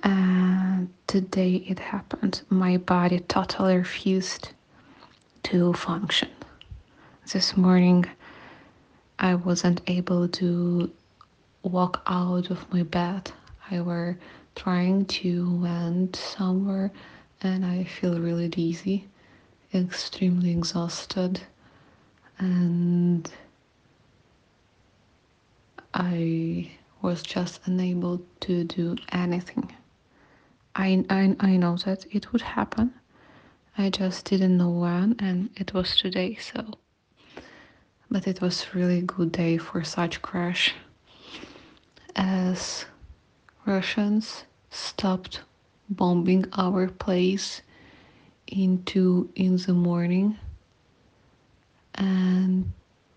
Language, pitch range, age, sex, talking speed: English, 175-195 Hz, 20-39, female, 90 wpm